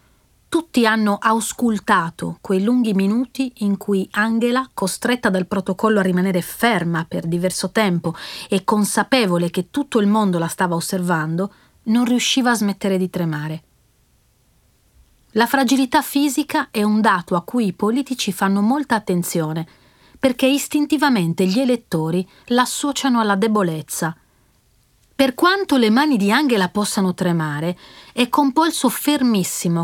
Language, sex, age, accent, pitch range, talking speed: Italian, female, 40-59, native, 185-250 Hz, 130 wpm